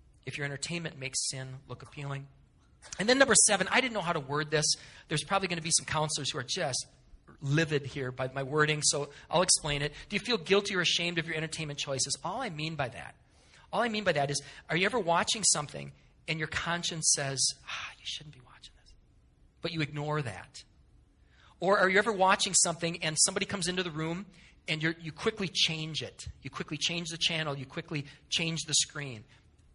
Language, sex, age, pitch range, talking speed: English, male, 40-59, 145-210 Hz, 210 wpm